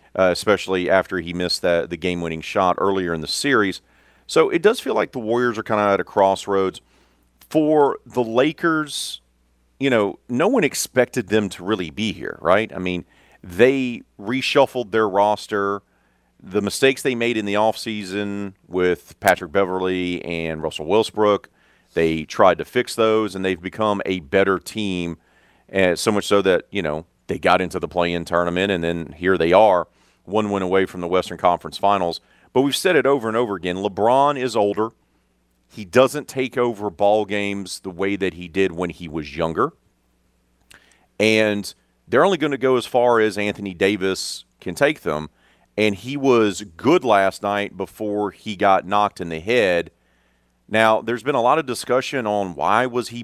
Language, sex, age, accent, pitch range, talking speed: English, male, 40-59, American, 85-110 Hz, 180 wpm